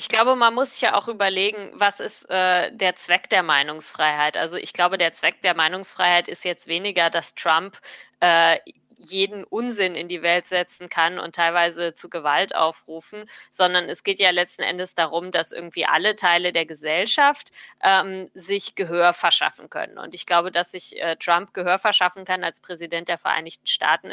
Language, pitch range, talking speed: German, 165-185 Hz, 180 wpm